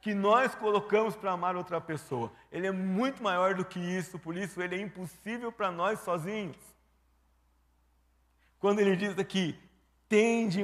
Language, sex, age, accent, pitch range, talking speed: Portuguese, male, 50-69, Brazilian, 160-200 Hz, 150 wpm